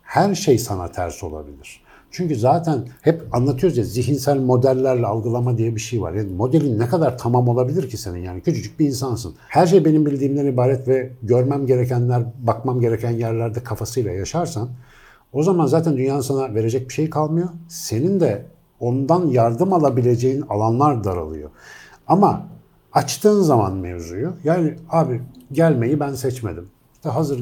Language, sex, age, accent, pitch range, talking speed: Turkish, male, 60-79, native, 115-155 Hz, 150 wpm